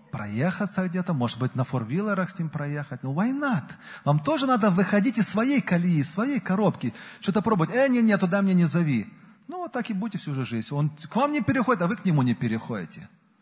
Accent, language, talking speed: native, Russian, 220 wpm